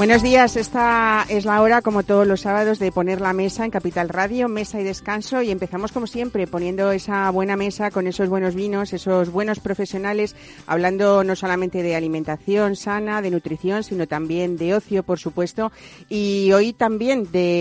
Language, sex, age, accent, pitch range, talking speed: Spanish, female, 40-59, Spanish, 170-200 Hz, 180 wpm